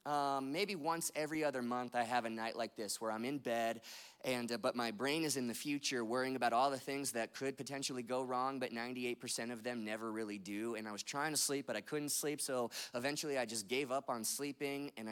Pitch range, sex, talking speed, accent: 115-140 Hz, male, 240 wpm, American